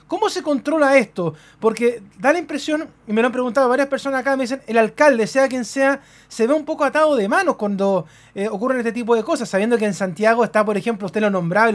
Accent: Argentinian